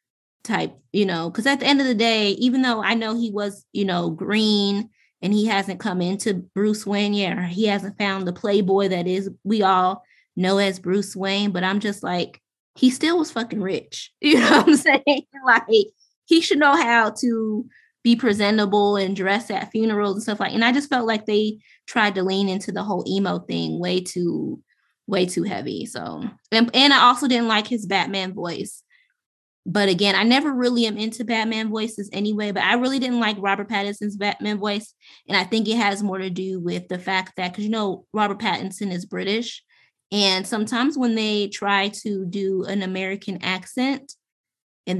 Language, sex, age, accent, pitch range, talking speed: English, female, 20-39, American, 195-245 Hz, 195 wpm